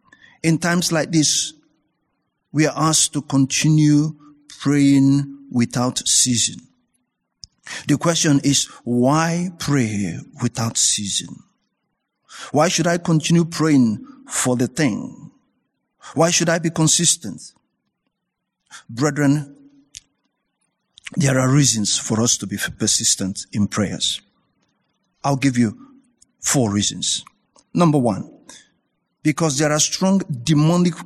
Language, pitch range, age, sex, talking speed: English, 135-170 Hz, 50-69, male, 105 wpm